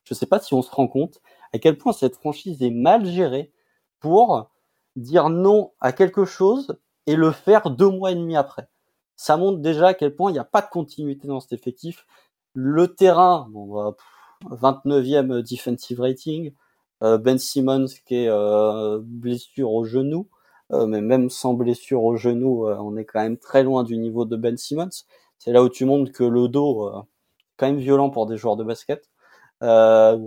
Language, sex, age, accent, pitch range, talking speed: French, male, 20-39, French, 120-160 Hz, 185 wpm